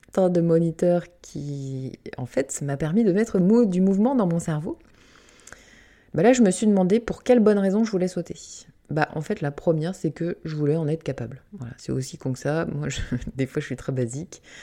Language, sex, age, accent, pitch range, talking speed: French, female, 20-39, French, 145-190 Hz, 210 wpm